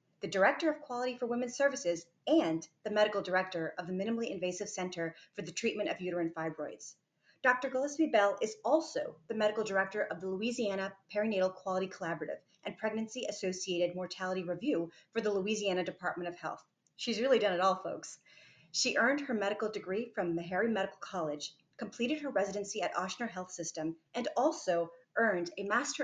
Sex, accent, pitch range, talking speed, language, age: female, American, 180-230 Hz, 170 wpm, English, 30-49